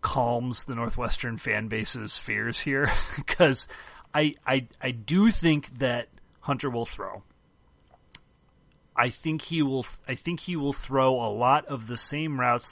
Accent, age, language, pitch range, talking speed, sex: American, 30-49, English, 110-140 Hz, 155 wpm, male